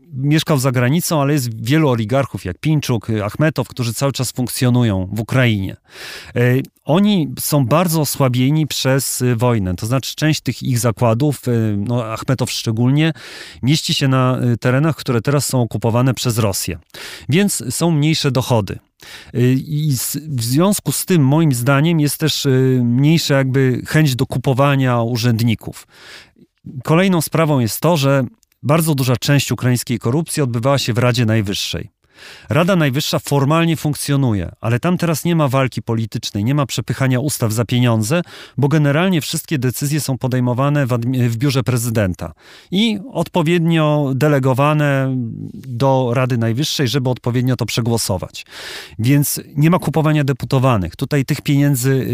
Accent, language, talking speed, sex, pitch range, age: native, Polish, 135 wpm, male, 120-145 Hz, 40-59